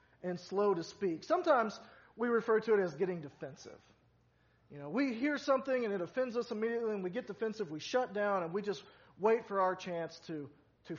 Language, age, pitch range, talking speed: English, 40-59, 160-225 Hz, 210 wpm